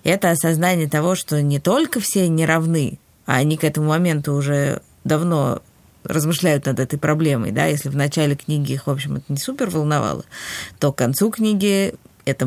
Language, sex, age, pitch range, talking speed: Russian, female, 20-39, 140-175 Hz, 180 wpm